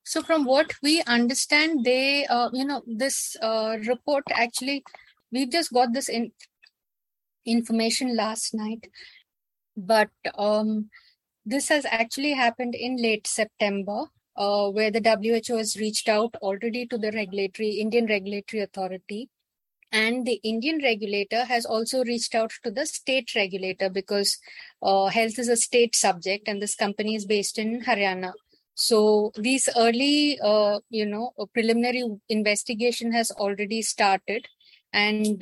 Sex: female